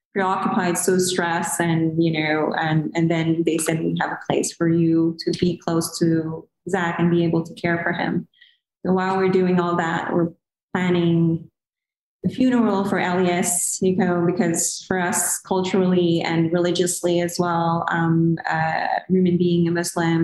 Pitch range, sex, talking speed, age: 165-180 Hz, female, 165 wpm, 20-39